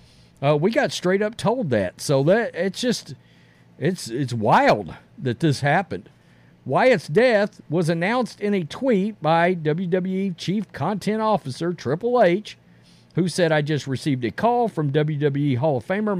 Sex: male